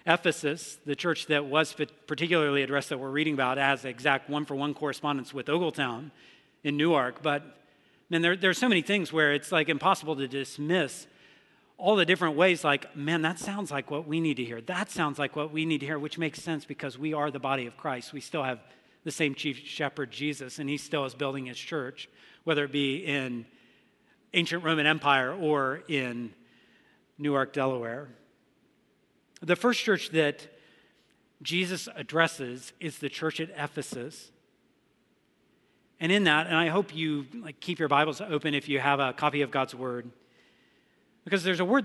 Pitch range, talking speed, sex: 135-160 Hz, 180 wpm, male